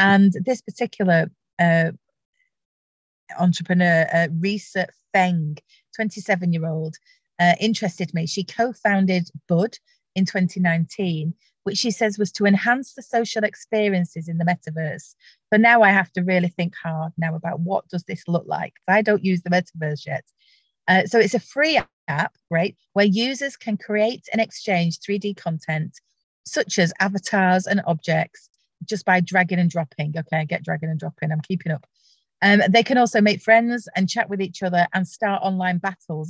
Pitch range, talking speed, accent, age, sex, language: 165-210 Hz, 160 wpm, British, 40-59, female, English